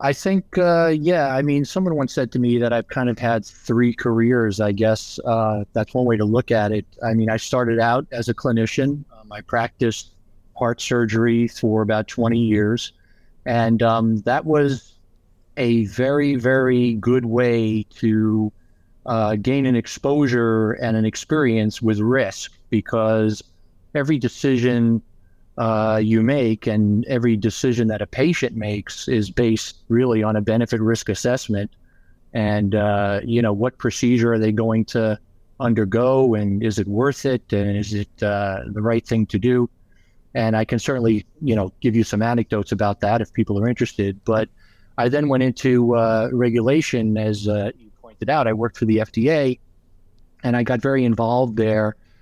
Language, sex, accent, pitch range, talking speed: English, male, American, 105-125 Hz, 170 wpm